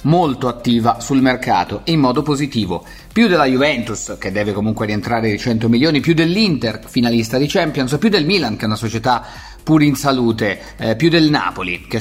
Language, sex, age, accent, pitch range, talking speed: Italian, male, 30-49, native, 120-170 Hz, 195 wpm